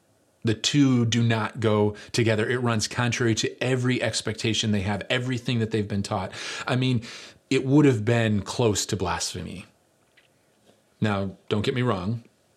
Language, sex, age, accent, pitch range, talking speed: English, male, 30-49, American, 100-115 Hz, 160 wpm